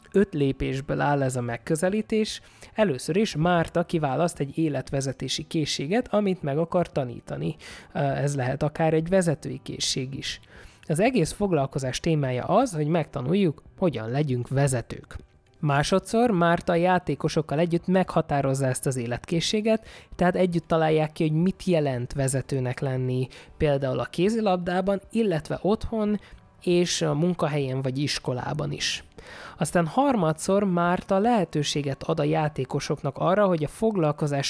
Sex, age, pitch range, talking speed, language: male, 20-39, 140-180 Hz, 125 wpm, Hungarian